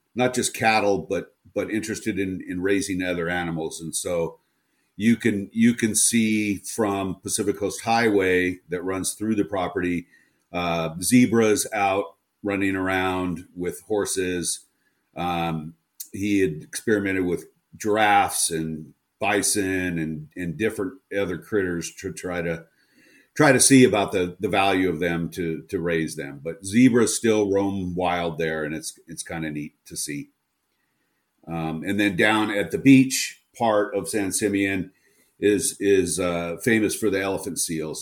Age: 50-69